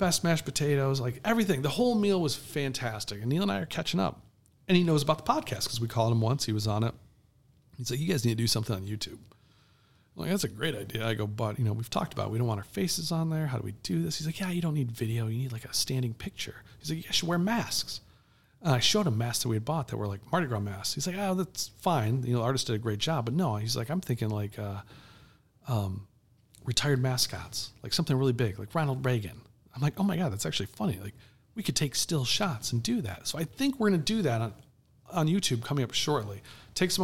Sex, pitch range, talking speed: male, 110-150 Hz, 270 wpm